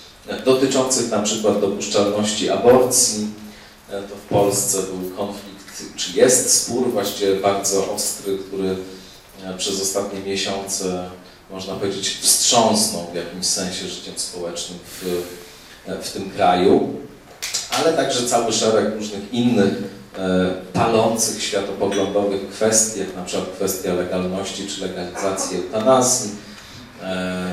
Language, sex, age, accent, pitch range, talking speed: Polish, male, 40-59, native, 95-115 Hz, 105 wpm